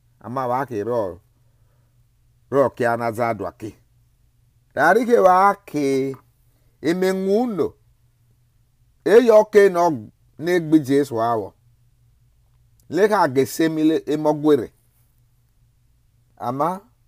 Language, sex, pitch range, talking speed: English, male, 120-165 Hz, 65 wpm